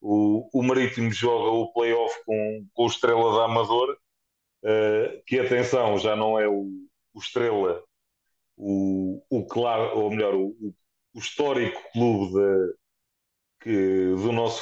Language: Portuguese